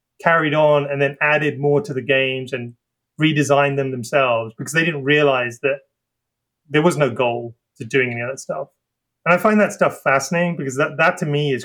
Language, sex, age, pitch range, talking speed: English, male, 30-49, 130-165 Hz, 205 wpm